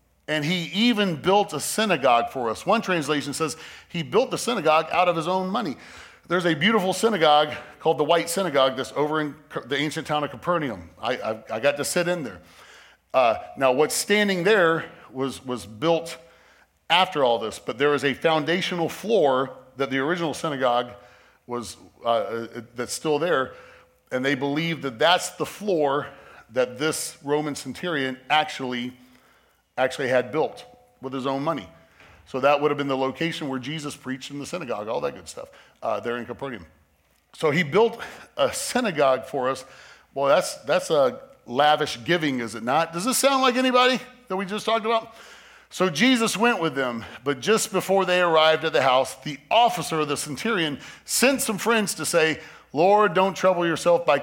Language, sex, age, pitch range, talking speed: English, male, 40-59, 135-180 Hz, 180 wpm